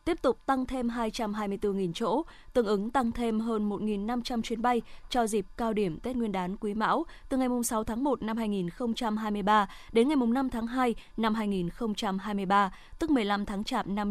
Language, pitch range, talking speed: Vietnamese, 210-255 Hz, 180 wpm